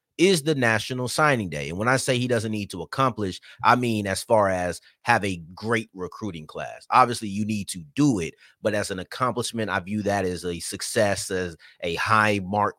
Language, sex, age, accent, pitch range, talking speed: English, male, 30-49, American, 105-165 Hz, 205 wpm